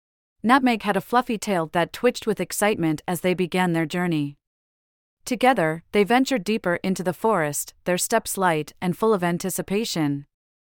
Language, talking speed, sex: English, 160 wpm, female